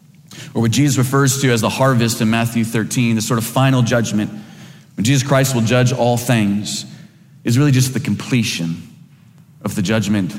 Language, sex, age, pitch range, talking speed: English, male, 30-49, 115-155 Hz, 180 wpm